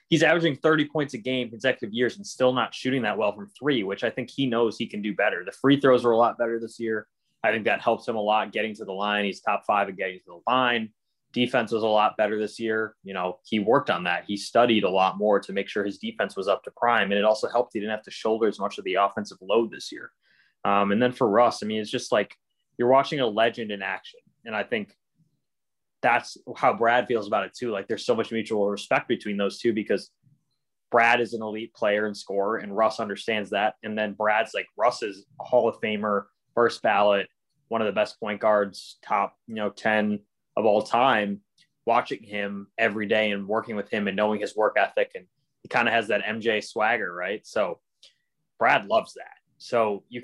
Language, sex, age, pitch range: English, male, 20-39, 105-120 Hz